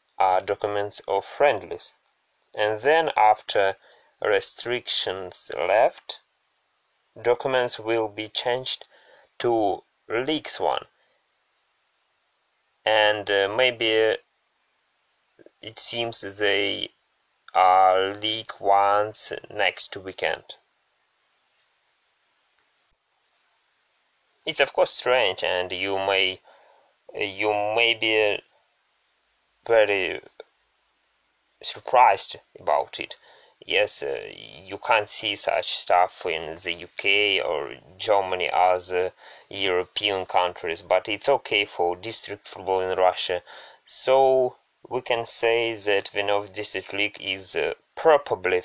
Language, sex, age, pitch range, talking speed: English, male, 20-39, 95-120 Hz, 95 wpm